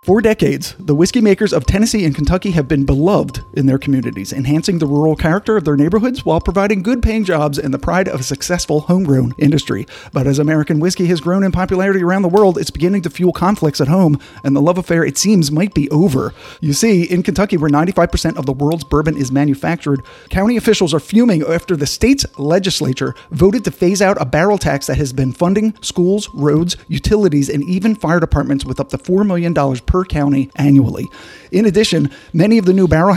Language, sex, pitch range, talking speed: English, male, 145-195 Hz, 210 wpm